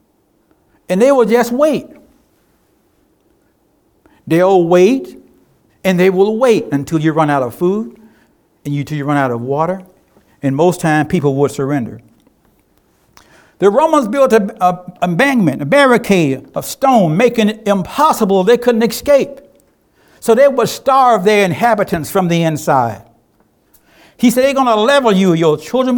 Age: 60-79